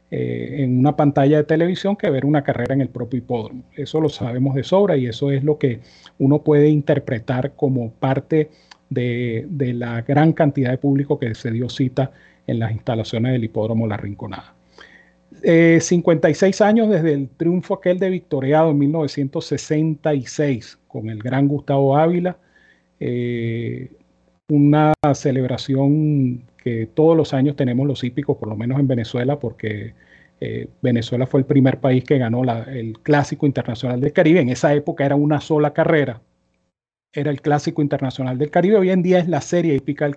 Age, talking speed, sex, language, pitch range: 40-59, 170 wpm, male, Spanish, 125-155 Hz